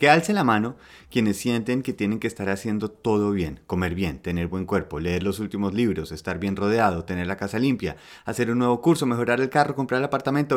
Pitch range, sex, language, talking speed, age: 95-120 Hz, male, Spanish, 220 wpm, 30-49